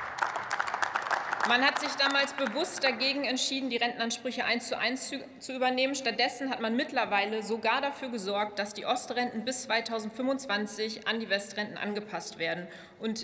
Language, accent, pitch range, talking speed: German, German, 210-255 Hz, 145 wpm